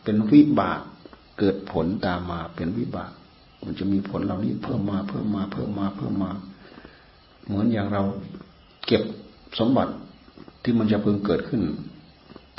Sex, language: male, Thai